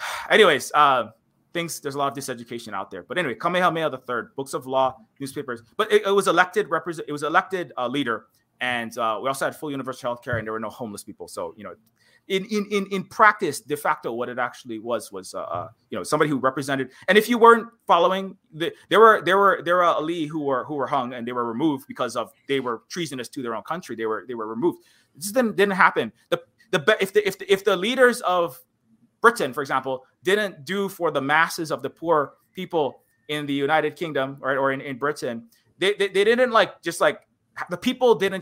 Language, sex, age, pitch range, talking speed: English, male, 30-49, 135-195 Hz, 230 wpm